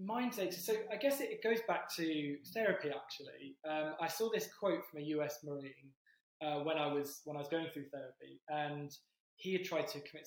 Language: English